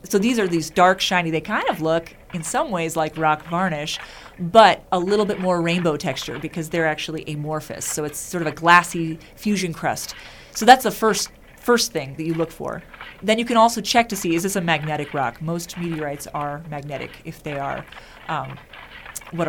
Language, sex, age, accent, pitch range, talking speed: English, female, 30-49, American, 160-190 Hz, 205 wpm